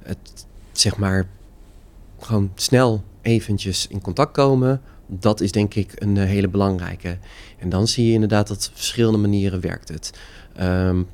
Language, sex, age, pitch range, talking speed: Dutch, male, 30-49, 95-110 Hz, 145 wpm